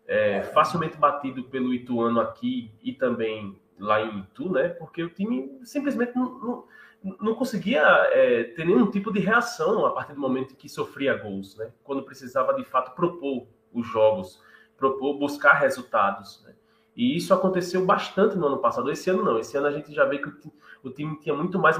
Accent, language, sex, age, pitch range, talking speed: Brazilian, Portuguese, male, 20-39, 125-205 Hz, 190 wpm